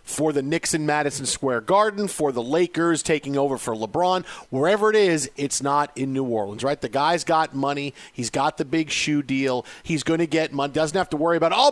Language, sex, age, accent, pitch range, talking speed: English, male, 40-59, American, 150-220 Hz, 225 wpm